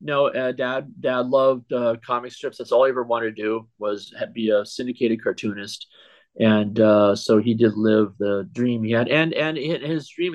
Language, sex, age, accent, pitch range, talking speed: English, male, 50-69, American, 110-130 Hz, 205 wpm